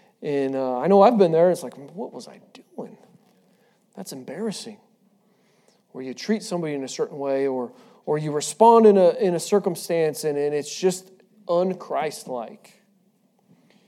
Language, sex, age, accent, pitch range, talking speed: English, male, 40-59, American, 140-210 Hz, 165 wpm